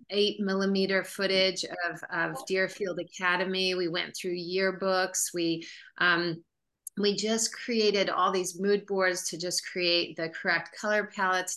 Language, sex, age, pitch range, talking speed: English, female, 40-59, 165-190 Hz, 140 wpm